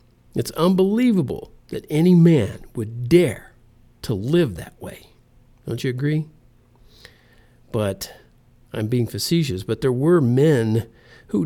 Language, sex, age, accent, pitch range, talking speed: English, male, 50-69, American, 115-155 Hz, 120 wpm